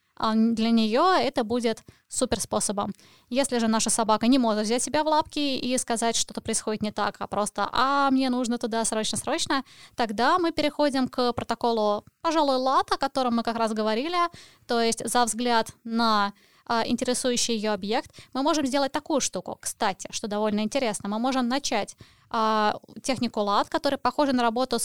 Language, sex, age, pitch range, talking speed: Russian, female, 20-39, 220-270 Hz, 170 wpm